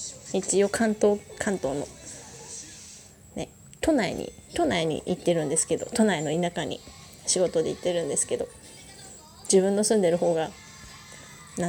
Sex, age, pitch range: female, 20-39, 175-240 Hz